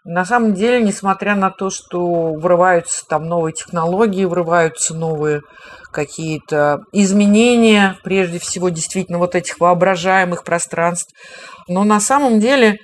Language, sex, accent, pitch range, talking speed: Russian, female, native, 175-210 Hz, 120 wpm